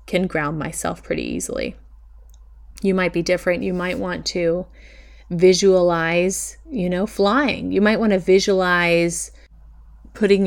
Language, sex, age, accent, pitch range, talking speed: English, female, 30-49, American, 165-200 Hz, 130 wpm